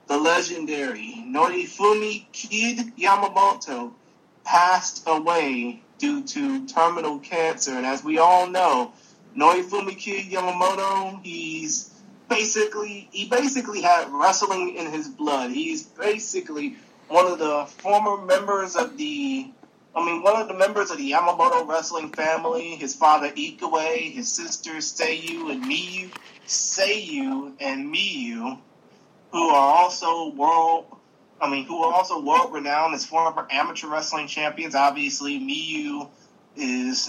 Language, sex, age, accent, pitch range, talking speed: English, male, 30-49, American, 155-240 Hz, 125 wpm